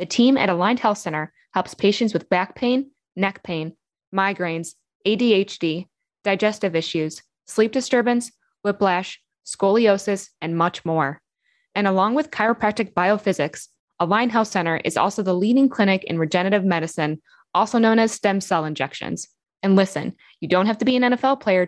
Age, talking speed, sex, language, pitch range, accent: 20-39, 155 wpm, female, English, 175-230 Hz, American